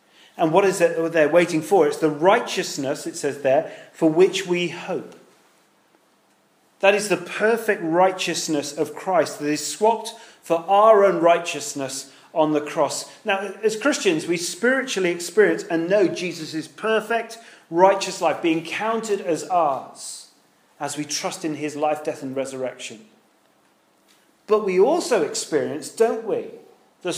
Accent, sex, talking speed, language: British, male, 145 wpm, English